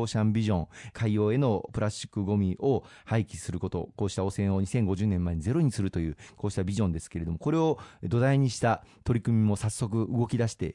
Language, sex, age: Japanese, male, 40-59